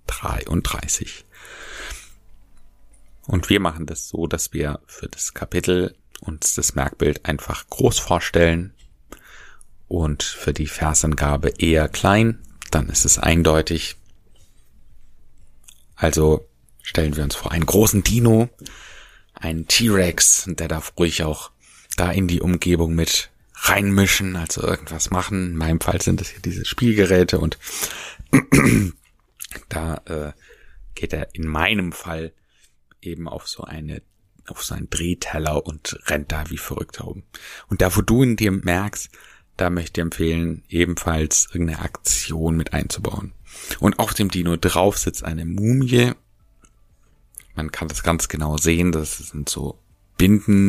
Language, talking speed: German, 135 wpm